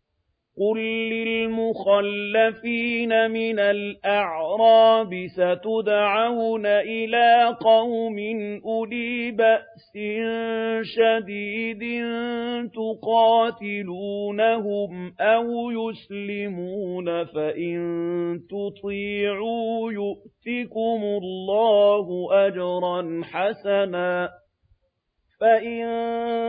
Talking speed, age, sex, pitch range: 45 wpm, 40-59, male, 180-225 Hz